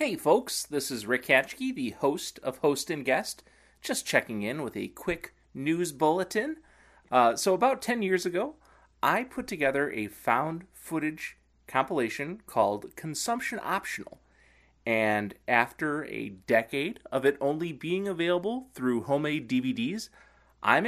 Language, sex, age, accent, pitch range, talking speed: English, male, 30-49, American, 135-215 Hz, 140 wpm